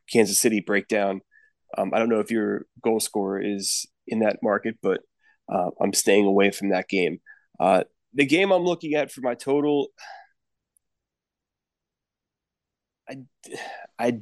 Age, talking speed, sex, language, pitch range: 20-39, 145 wpm, male, English, 105-130 Hz